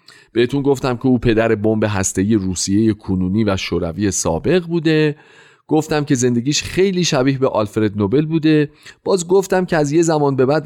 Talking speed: 170 wpm